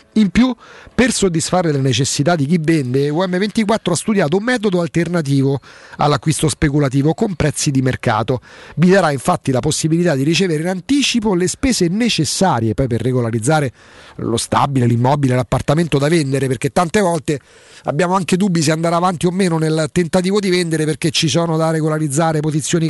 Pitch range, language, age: 145-195 Hz, Italian, 40-59